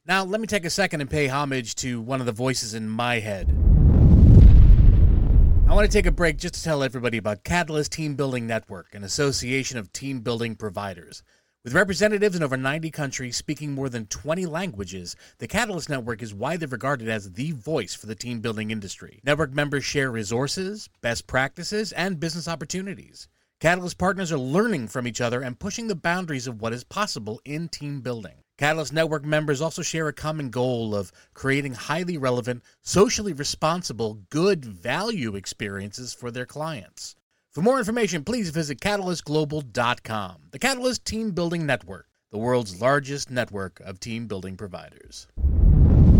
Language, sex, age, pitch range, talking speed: English, male, 30-49, 110-165 Hz, 170 wpm